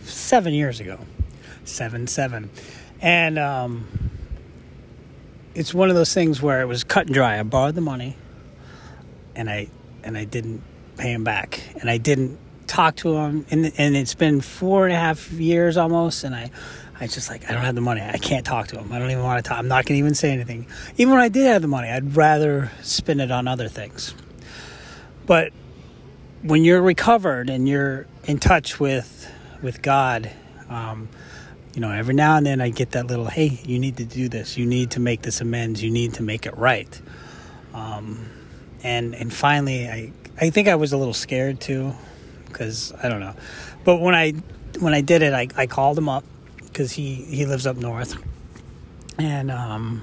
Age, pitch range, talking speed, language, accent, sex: 30-49, 115-145 Hz, 200 wpm, English, American, male